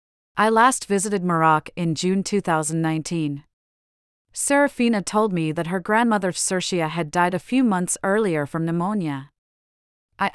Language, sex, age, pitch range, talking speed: English, female, 40-59, 165-200 Hz, 135 wpm